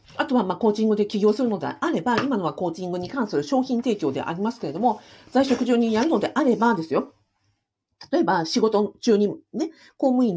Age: 40-59